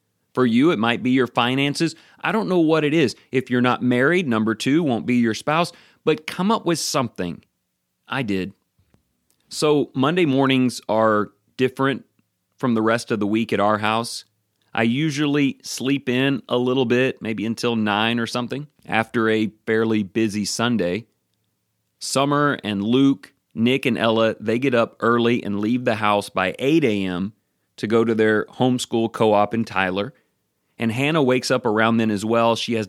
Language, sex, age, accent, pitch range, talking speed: English, male, 30-49, American, 105-135 Hz, 175 wpm